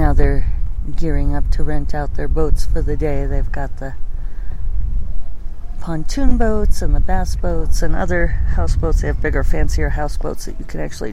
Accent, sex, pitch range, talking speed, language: American, female, 80-130 Hz, 180 wpm, English